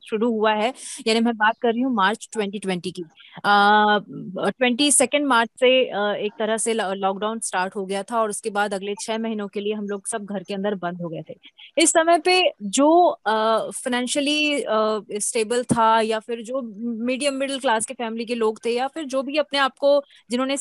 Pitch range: 210-275 Hz